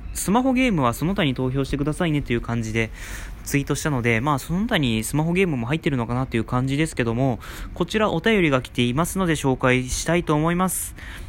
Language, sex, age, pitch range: Japanese, male, 20-39, 115-170 Hz